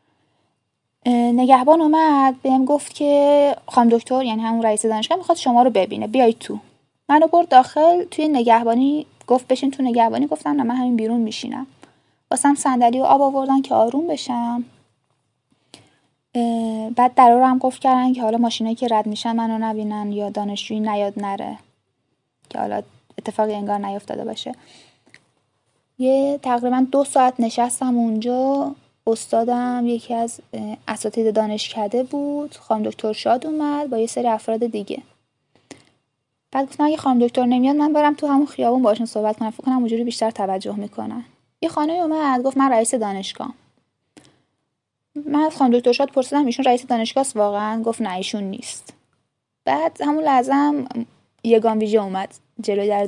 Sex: female